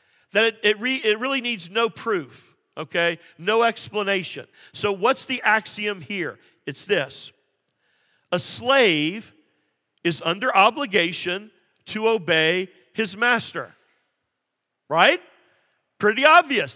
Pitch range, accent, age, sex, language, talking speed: 200-265 Hz, American, 50-69, male, English, 110 wpm